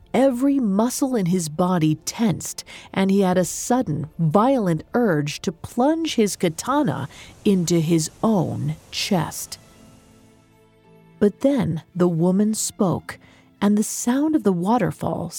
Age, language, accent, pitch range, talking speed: 40-59, English, American, 155-220 Hz, 125 wpm